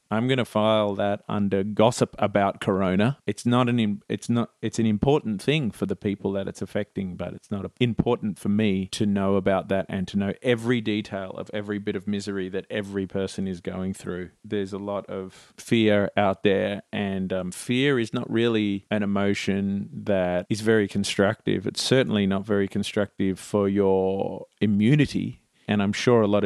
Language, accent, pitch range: English, Australian, 95-110 Hz